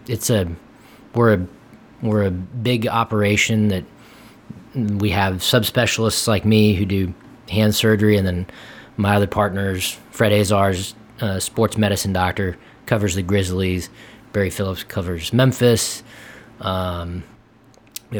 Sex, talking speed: male, 125 wpm